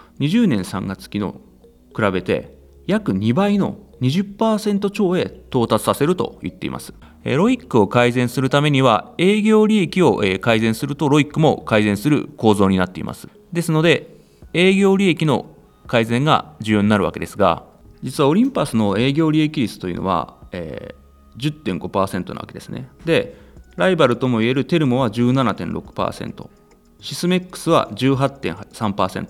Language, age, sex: Japanese, 30-49, male